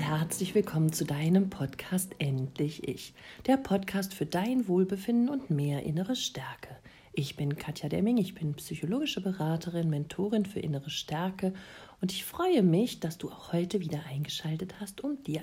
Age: 50-69